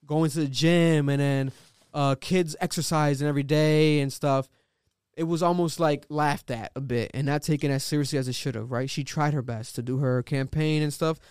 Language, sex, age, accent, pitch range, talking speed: English, male, 20-39, American, 135-170 Hz, 220 wpm